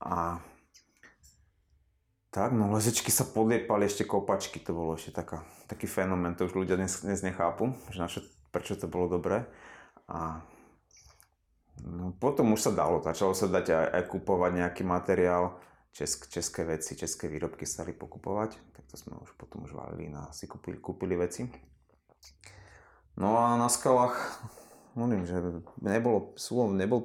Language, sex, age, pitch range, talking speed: Slovak, male, 30-49, 85-110 Hz, 150 wpm